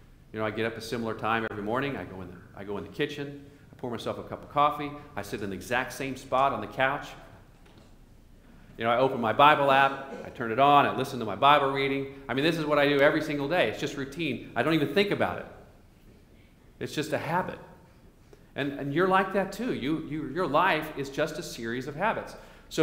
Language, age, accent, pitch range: English, 40-59, American, 115-160 Hz